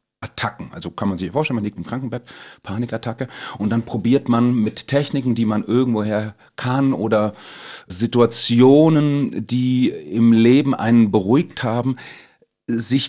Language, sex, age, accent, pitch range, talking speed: German, male, 40-59, German, 105-125 Hz, 140 wpm